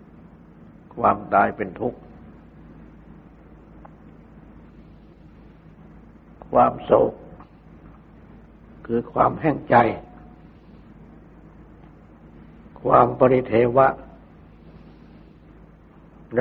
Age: 60-79